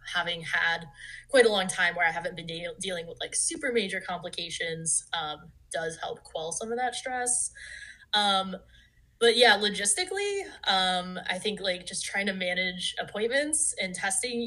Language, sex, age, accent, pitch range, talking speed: English, female, 10-29, American, 175-215 Hz, 165 wpm